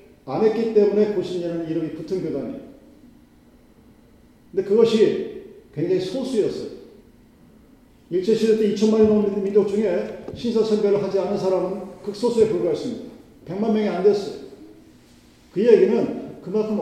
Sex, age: male, 40-59